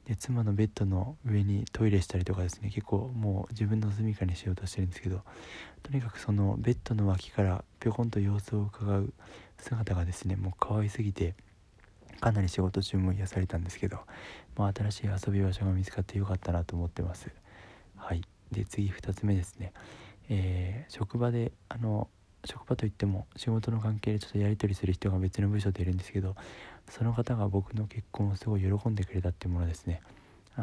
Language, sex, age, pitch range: Japanese, male, 20-39, 95-110 Hz